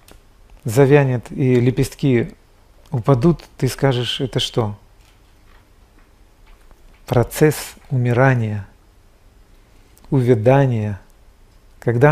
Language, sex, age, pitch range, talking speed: Russian, male, 40-59, 105-135 Hz, 60 wpm